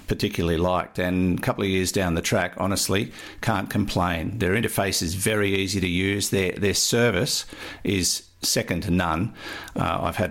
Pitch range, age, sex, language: 90-110 Hz, 50-69, male, English